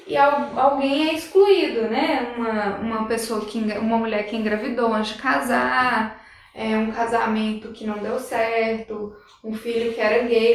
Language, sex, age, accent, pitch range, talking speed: Portuguese, female, 10-29, Brazilian, 220-280 Hz, 160 wpm